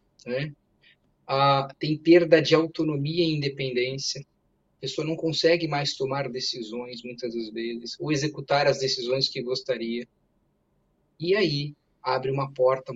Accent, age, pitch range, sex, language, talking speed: Brazilian, 20-39, 120-145 Hz, male, Portuguese, 135 wpm